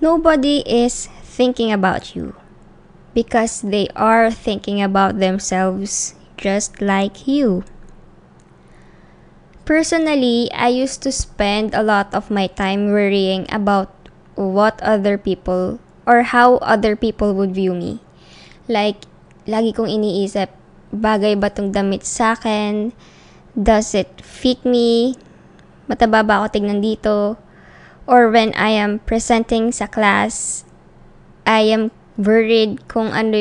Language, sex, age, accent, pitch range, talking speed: English, male, 10-29, Filipino, 205-235 Hz, 120 wpm